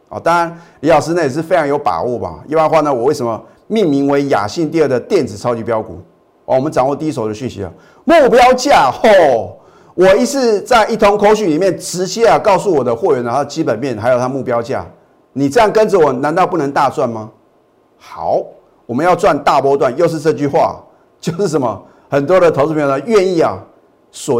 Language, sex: Chinese, male